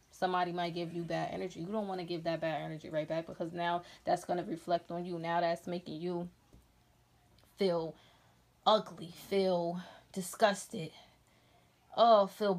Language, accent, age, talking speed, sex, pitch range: English, American, 20-39, 155 wpm, female, 175-205 Hz